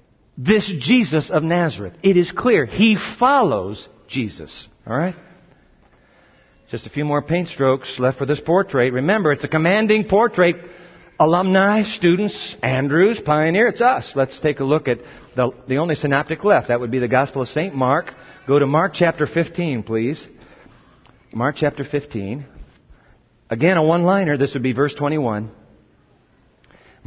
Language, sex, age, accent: German, male, 50-69, American